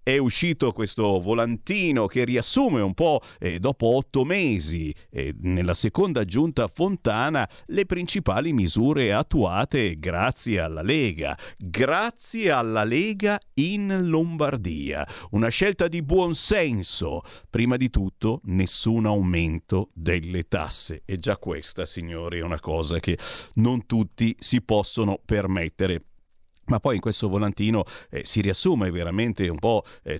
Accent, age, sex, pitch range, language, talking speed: native, 50-69, male, 95-130 Hz, Italian, 130 wpm